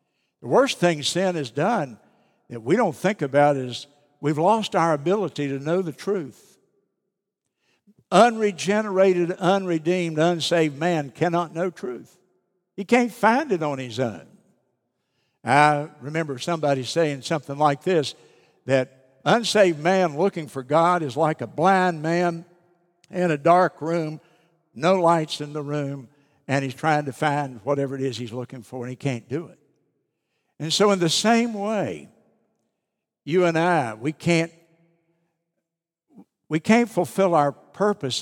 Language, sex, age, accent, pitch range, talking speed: English, male, 60-79, American, 145-185 Hz, 145 wpm